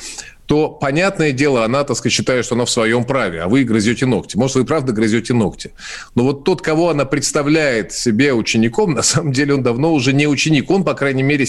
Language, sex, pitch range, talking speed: Russian, male, 120-160 Hz, 215 wpm